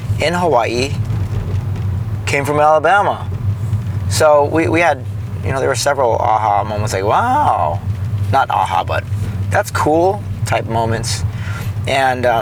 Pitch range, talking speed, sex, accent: 105-120 Hz, 125 wpm, male, American